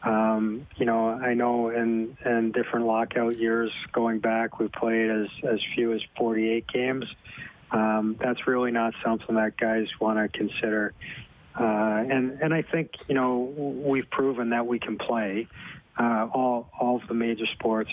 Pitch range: 110-120 Hz